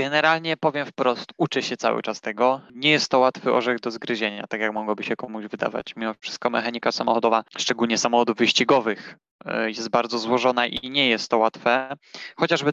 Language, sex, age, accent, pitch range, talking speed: Polish, male, 20-39, native, 115-130 Hz, 175 wpm